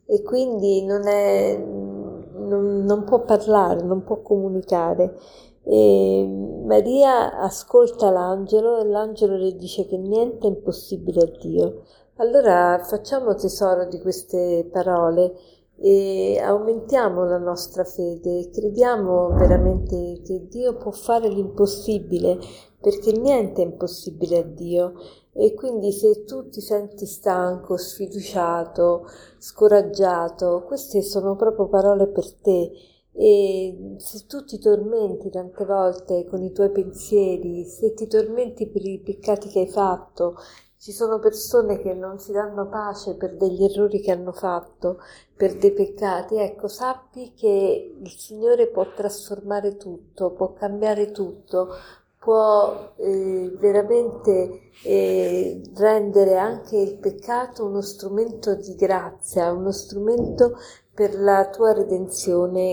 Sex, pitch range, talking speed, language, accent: female, 185-215 Hz, 125 wpm, Italian, native